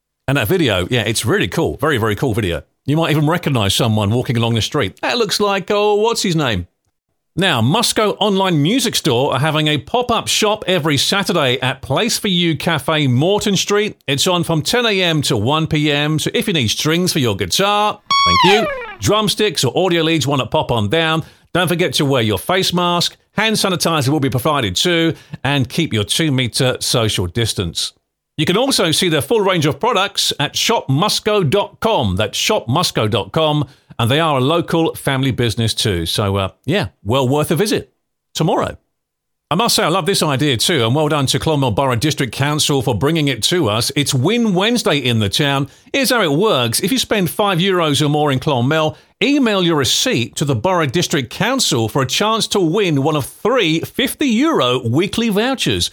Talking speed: 190 wpm